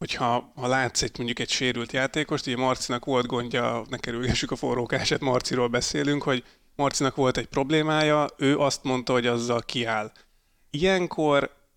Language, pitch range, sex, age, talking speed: Hungarian, 120-145 Hz, male, 30-49, 150 wpm